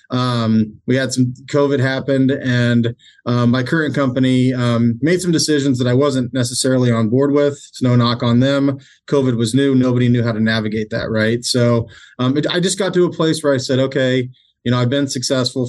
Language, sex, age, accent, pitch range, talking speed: English, male, 30-49, American, 120-135 Hz, 205 wpm